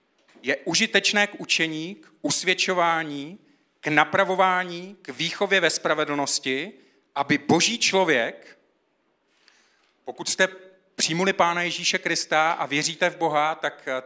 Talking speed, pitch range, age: 110 wpm, 150-195 Hz, 40-59